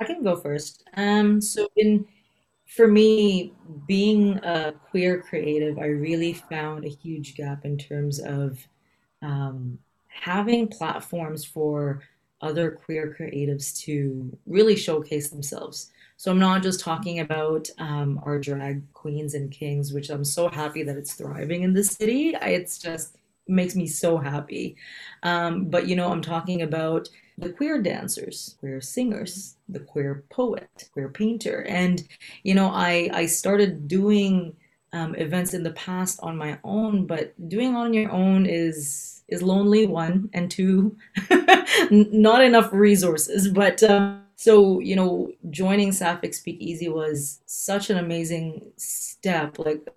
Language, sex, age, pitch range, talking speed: English, female, 30-49, 150-200 Hz, 150 wpm